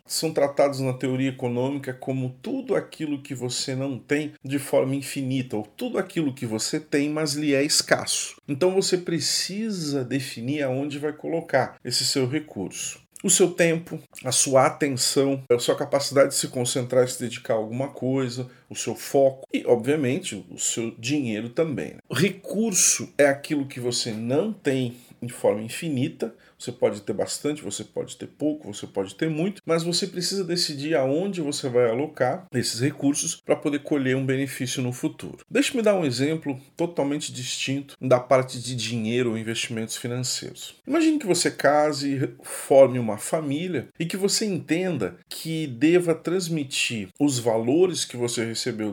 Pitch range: 125-160 Hz